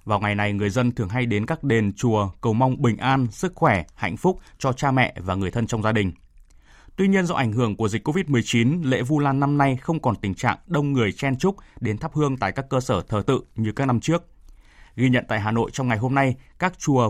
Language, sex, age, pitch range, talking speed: Vietnamese, male, 20-39, 105-135 Hz, 255 wpm